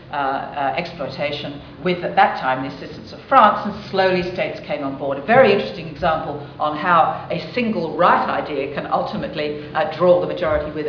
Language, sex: English, female